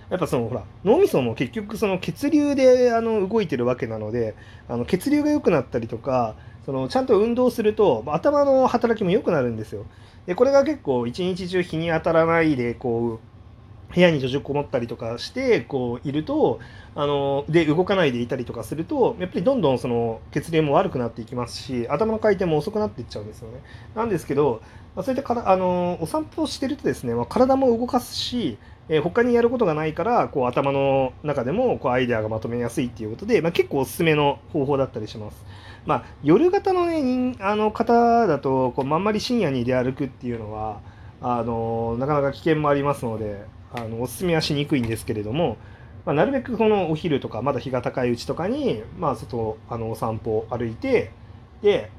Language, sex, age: Japanese, male, 30-49